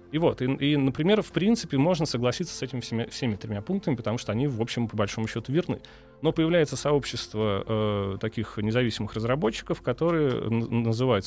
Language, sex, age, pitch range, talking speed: Russian, male, 30-49, 110-145 Hz, 175 wpm